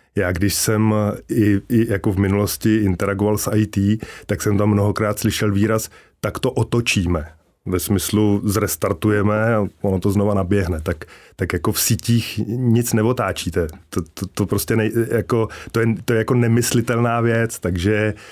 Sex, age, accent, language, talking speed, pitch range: male, 20-39, native, Czech, 155 wpm, 100-110 Hz